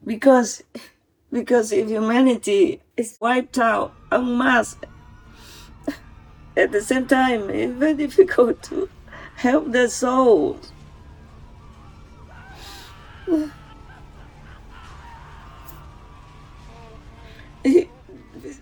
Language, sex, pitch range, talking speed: English, female, 205-315 Hz, 70 wpm